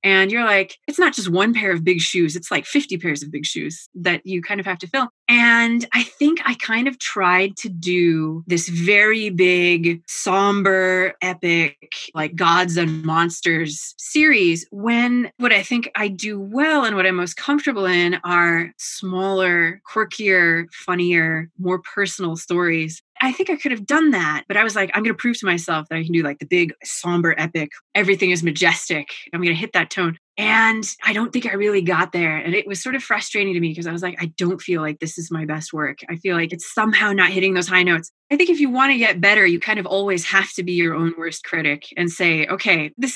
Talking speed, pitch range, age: 225 wpm, 170-215 Hz, 20-39